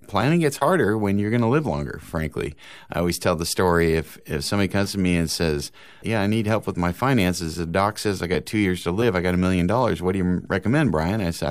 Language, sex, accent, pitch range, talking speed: English, male, American, 85-105 Hz, 265 wpm